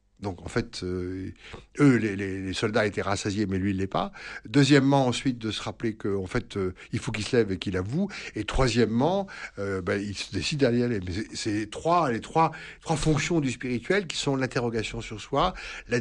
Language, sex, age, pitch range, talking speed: French, male, 60-79, 100-140 Hz, 215 wpm